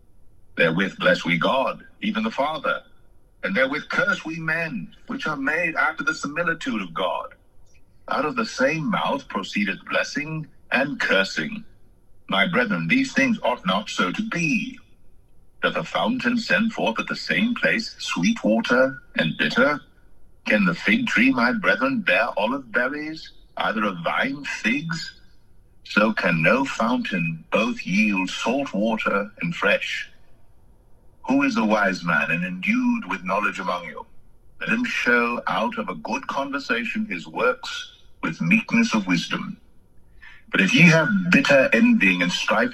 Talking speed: 150 wpm